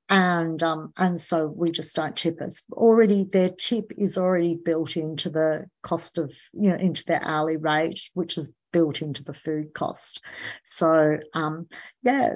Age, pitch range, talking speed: 50-69, 165-195 Hz, 170 wpm